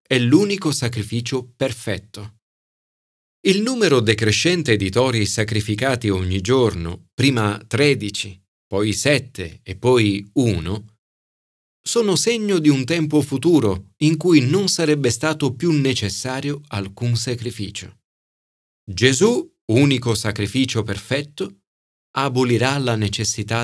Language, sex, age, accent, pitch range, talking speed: Italian, male, 40-59, native, 105-155 Hz, 105 wpm